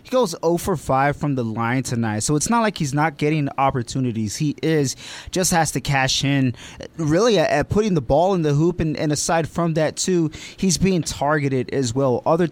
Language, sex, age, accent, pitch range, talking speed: English, male, 20-39, American, 140-175 Hz, 215 wpm